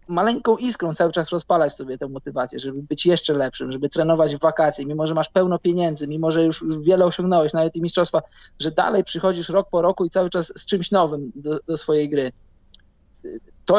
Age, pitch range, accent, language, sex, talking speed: 20-39, 150-185 Hz, native, Polish, male, 200 wpm